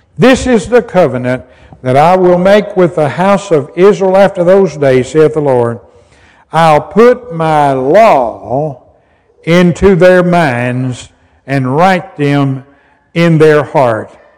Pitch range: 130-185 Hz